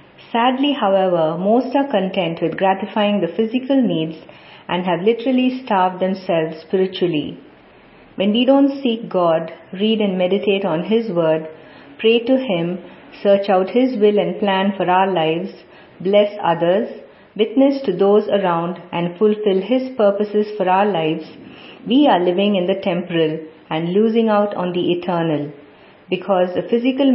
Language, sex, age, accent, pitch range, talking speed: English, female, 50-69, Indian, 170-220 Hz, 150 wpm